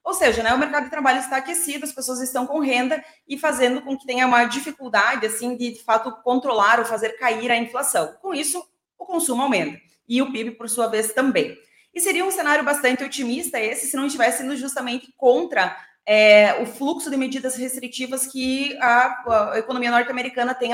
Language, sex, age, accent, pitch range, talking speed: Portuguese, female, 20-39, Brazilian, 230-275 Hz, 190 wpm